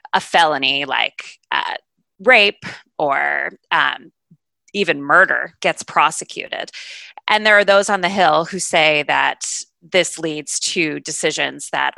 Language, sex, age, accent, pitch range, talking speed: English, female, 30-49, American, 160-220 Hz, 130 wpm